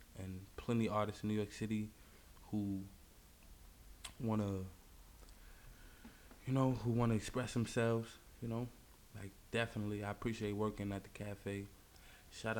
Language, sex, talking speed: English, male, 130 wpm